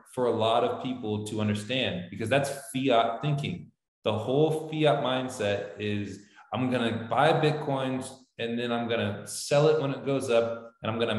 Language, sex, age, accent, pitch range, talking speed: English, male, 20-39, American, 110-130 Hz, 175 wpm